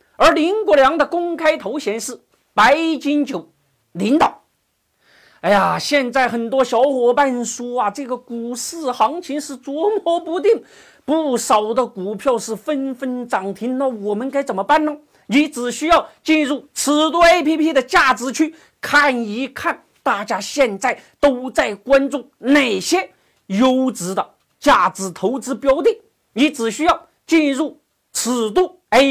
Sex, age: male, 40-59